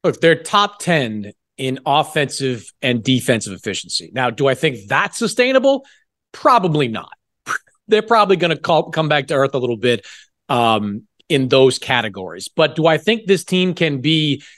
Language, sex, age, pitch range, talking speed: English, male, 40-59, 135-180 Hz, 165 wpm